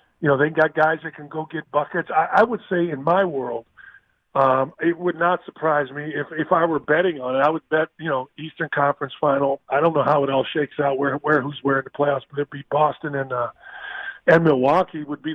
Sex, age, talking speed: male, 40-59, 240 wpm